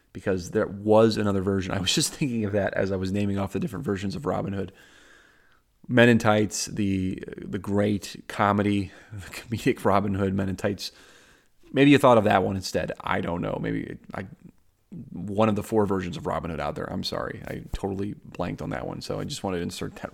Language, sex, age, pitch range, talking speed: English, male, 30-49, 100-135 Hz, 220 wpm